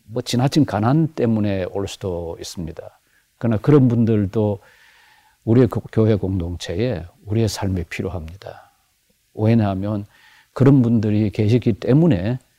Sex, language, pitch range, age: male, Korean, 95-120 Hz, 50-69